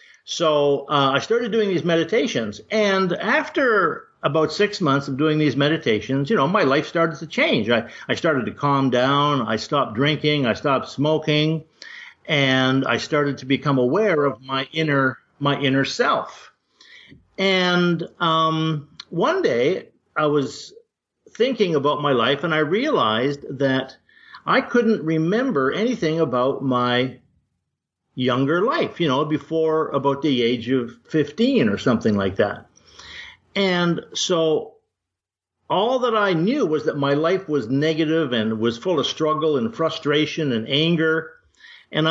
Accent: American